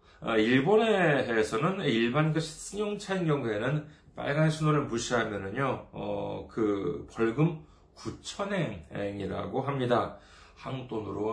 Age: 40-59